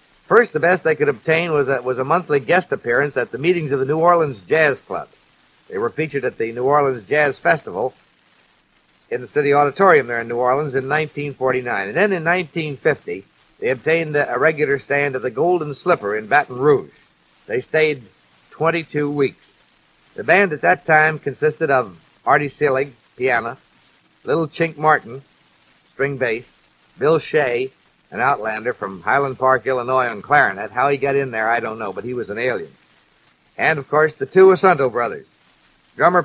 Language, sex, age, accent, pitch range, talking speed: English, male, 50-69, American, 135-160 Hz, 175 wpm